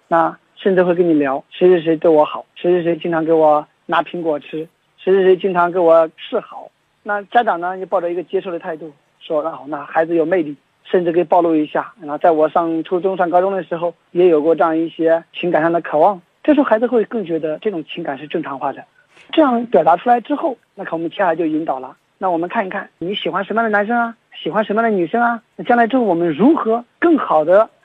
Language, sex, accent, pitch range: Chinese, male, native, 165-225 Hz